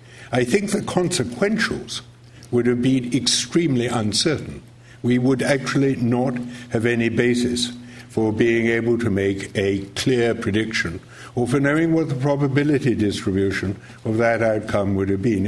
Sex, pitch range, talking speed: male, 105-130 Hz, 145 wpm